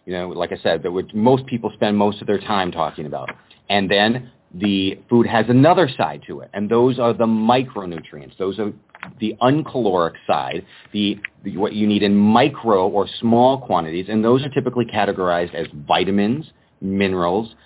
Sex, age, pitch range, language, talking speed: male, 40-59, 100-125 Hz, English, 180 wpm